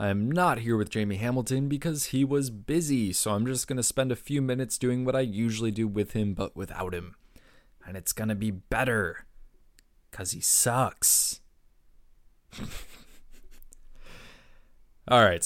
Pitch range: 105-135 Hz